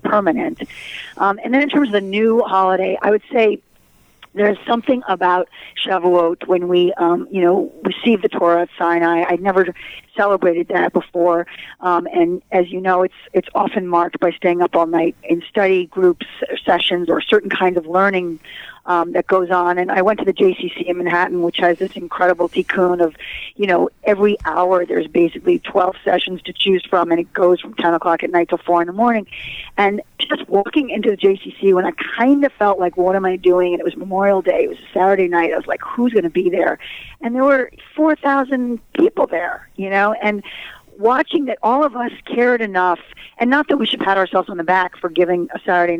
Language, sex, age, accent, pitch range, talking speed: English, female, 40-59, American, 180-220 Hz, 210 wpm